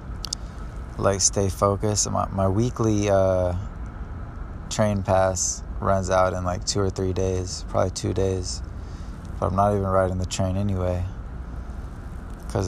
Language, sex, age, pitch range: English, male, 20-39, 85-100 Hz